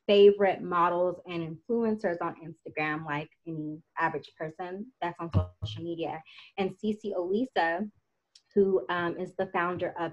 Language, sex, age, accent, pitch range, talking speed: English, female, 20-39, American, 160-190 Hz, 135 wpm